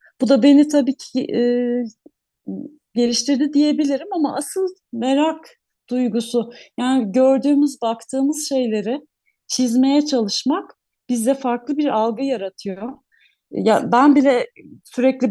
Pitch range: 220-280 Hz